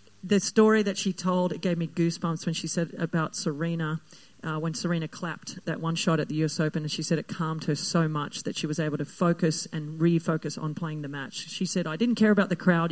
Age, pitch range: 40-59, 160-195 Hz